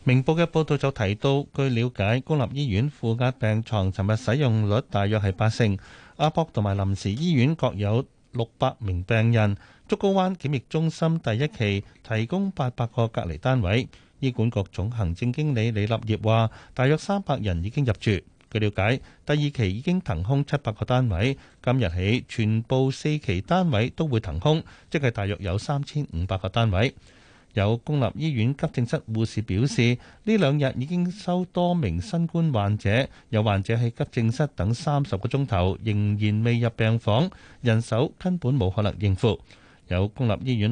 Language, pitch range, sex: Chinese, 105-145 Hz, male